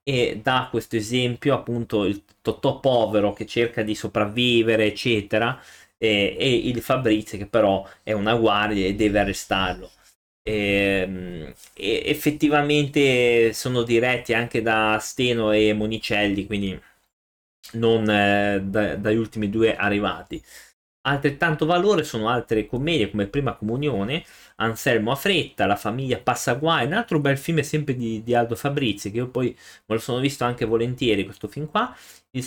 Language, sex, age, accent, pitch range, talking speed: Italian, male, 20-39, native, 105-130 Hz, 150 wpm